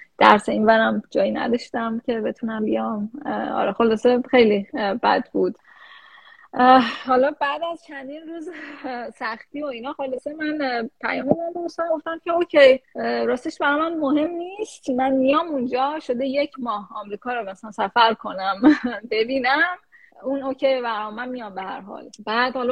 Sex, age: female, 10-29